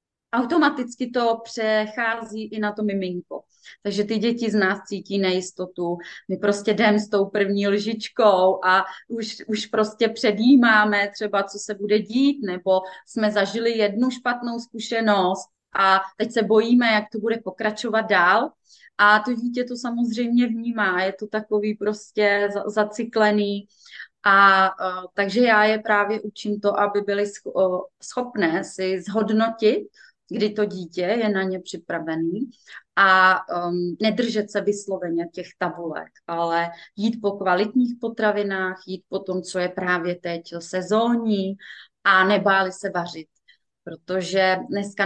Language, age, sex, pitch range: Czech, 30-49, female, 190-225 Hz